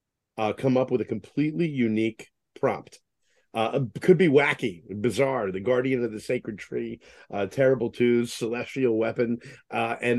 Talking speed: 155 wpm